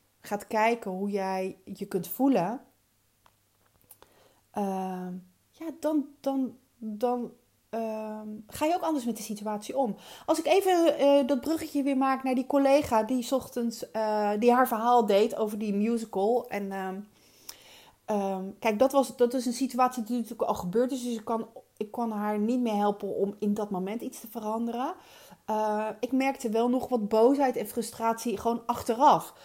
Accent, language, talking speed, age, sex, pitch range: Dutch, Dutch, 175 wpm, 30-49, female, 210-270 Hz